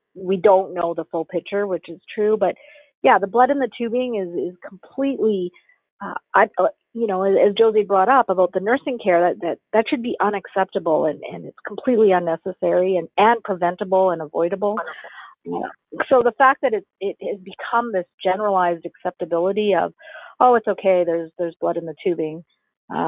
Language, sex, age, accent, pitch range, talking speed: English, female, 40-59, American, 175-255 Hz, 180 wpm